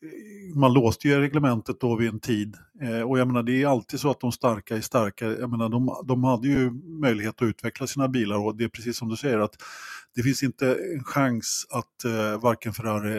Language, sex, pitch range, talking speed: Swedish, male, 110-135 Hz, 225 wpm